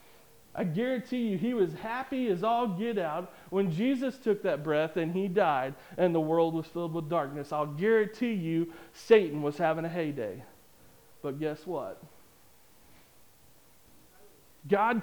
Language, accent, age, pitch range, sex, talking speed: English, American, 40-59, 165-220 Hz, male, 150 wpm